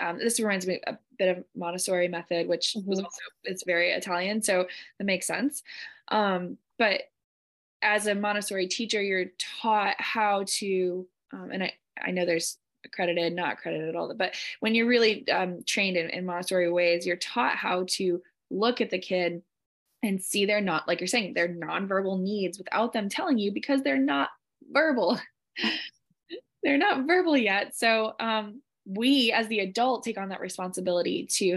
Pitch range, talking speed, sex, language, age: 180-225 Hz, 175 wpm, female, English, 20-39